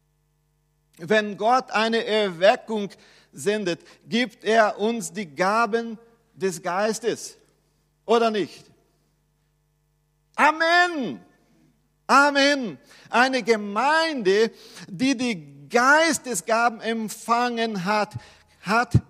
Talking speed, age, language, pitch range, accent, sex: 75 wpm, 50-69, German, 190-250 Hz, German, male